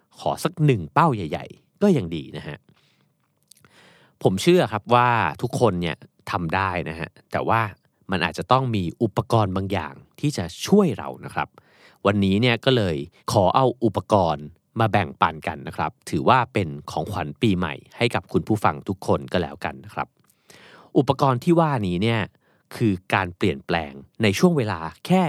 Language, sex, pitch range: Thai, male, 90-130 Hz